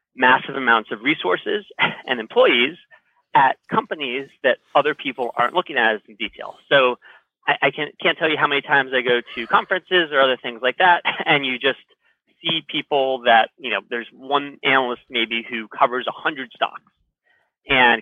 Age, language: 30-49, English